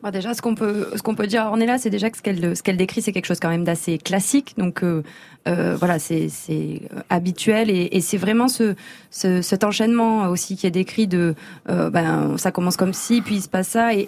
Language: French